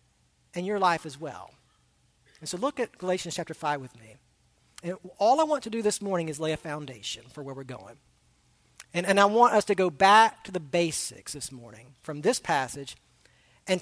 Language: English